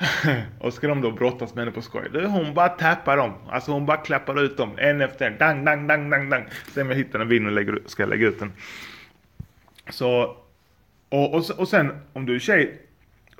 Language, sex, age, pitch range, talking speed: Swedish, male, 30-49, 110-145 Hz, 215 wpm